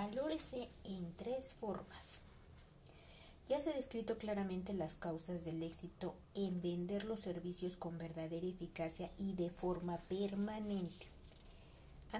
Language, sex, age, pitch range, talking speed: Spanish, female, 50-69, 165-215 Hz, 125 wpm